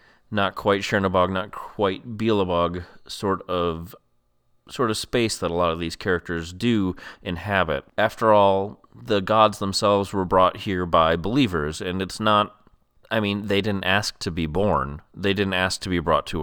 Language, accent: English, American